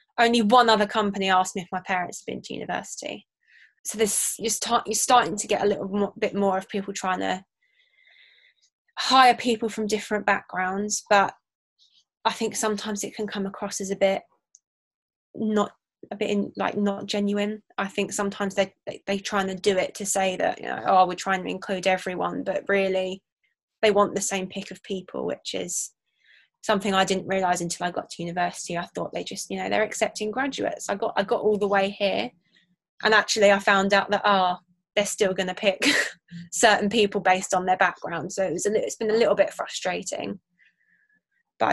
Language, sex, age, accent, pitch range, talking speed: English, female, 20-39, British, 185-210 Hz, 205 wpm